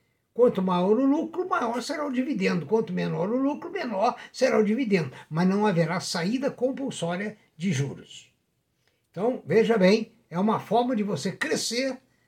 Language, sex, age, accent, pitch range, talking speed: Portuguese, male, 60-79, Brazilian, 170-240 Hz, 155 wpm